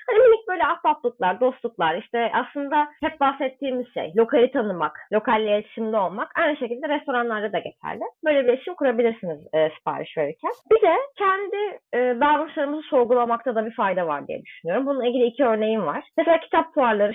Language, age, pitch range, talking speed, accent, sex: Turkish, 30-49, 225-315 Hz, 160 wpm, native, female